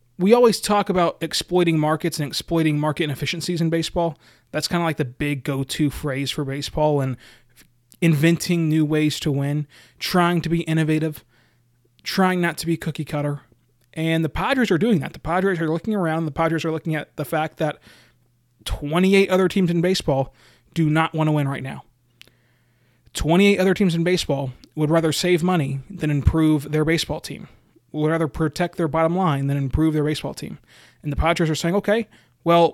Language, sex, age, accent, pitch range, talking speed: English, male, 20-39, American, 145-170 Hz, 185 wpm